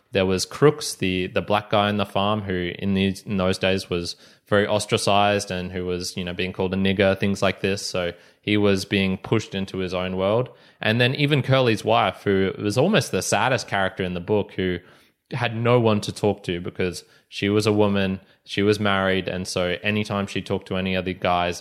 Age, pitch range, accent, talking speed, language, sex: 20-39, 95-110 Hz, Australian, 215 wpm, English, male